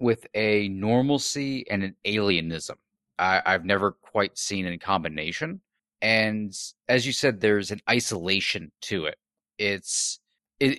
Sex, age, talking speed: male, 30-49, 135 wpm